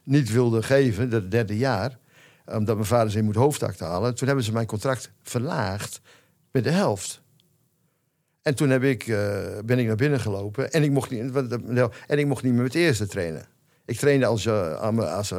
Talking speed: 205 wpm